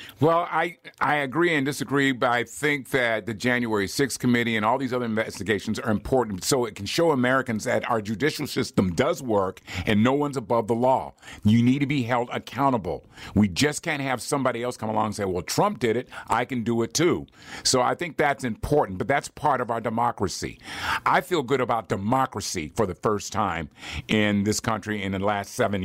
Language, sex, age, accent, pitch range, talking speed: English, male, 50-69, American, 110-135 Hz, 210 wpm